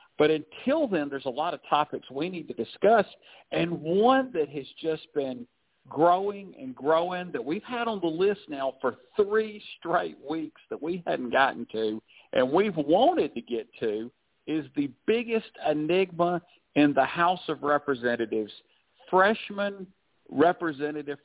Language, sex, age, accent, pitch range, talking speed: English, male, 50-69, American, 135-190 Hz, 155 wpm